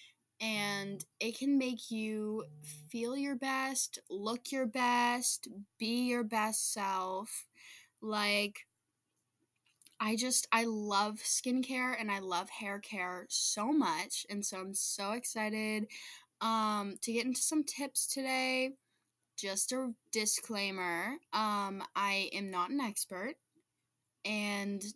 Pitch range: 205-260 Hz